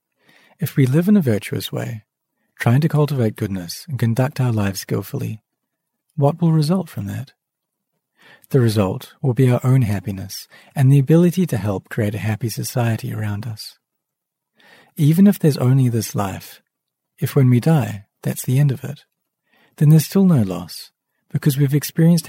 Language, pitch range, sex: English, 105-145 Hz, male